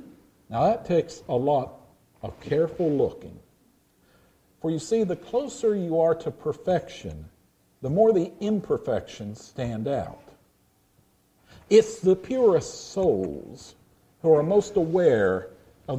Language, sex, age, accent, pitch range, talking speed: English, male, 50-69, American, 115-190 Hz, 120 wpm